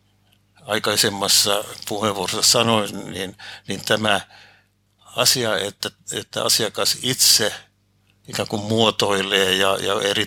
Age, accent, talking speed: 60-79, native, 100 wpm